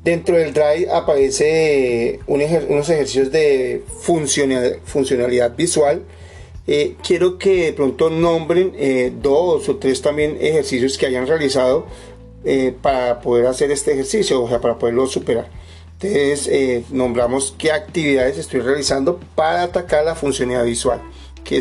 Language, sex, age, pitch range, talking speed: Spanish, male, 40-59, 125-170 Hz, 135 wpm